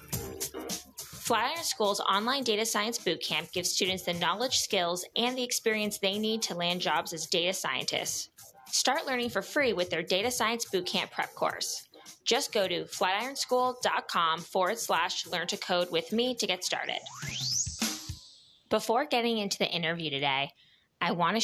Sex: female